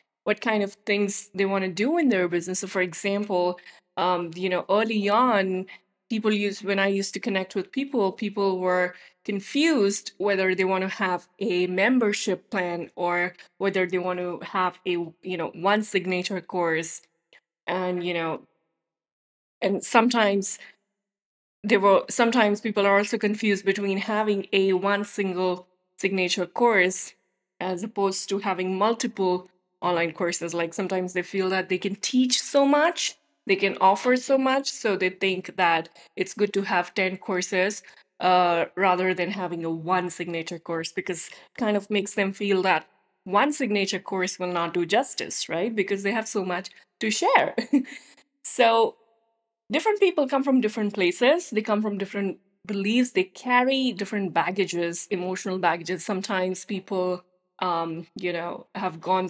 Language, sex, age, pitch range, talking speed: English, female, 20-39, 180-210 Hz, 160 wpm